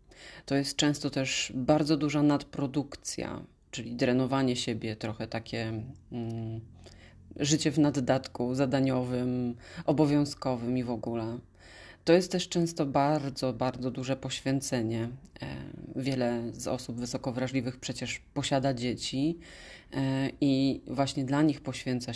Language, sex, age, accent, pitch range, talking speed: Polish, female, 30-49, native, 120-140 Hz, 110 wpm